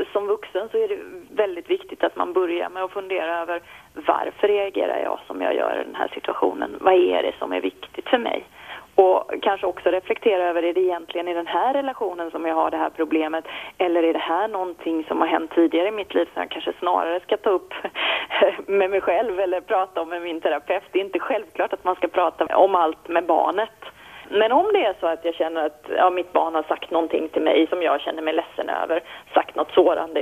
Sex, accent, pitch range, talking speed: female, Swedish, 165-215 Hz, 230 wpm